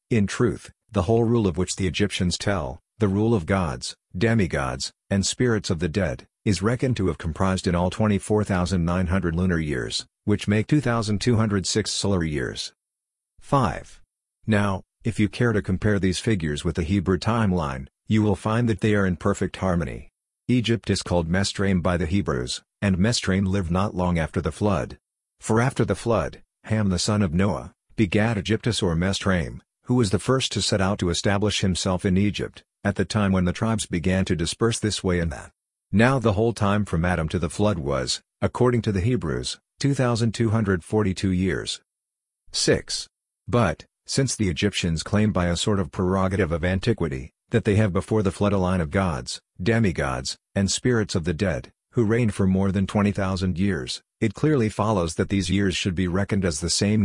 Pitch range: 90-110 Hz